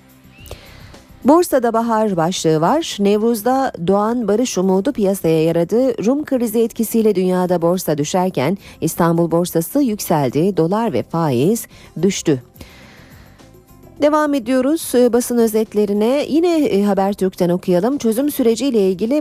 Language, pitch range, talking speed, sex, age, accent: Turkish, 165-220 Hz, 105 wpm, female, 40-59, native